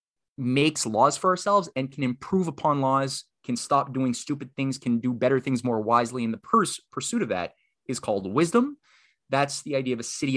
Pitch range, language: 110-140 Hz, English